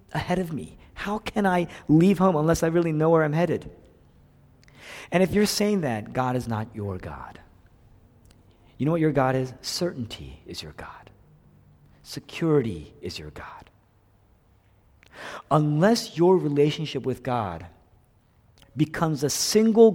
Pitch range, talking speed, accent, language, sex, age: 95-145 Hz, 140 wpm, American, English, male, 50-69